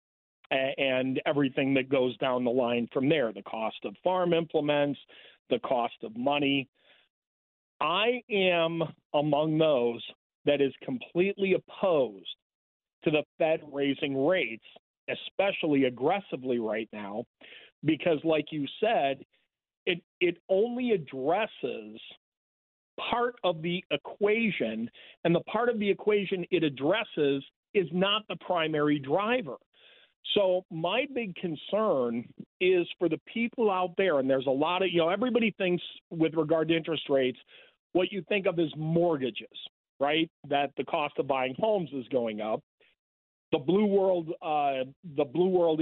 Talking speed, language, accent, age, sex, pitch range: 135 wpm, English, American, 40-59, male, 140-190 Hz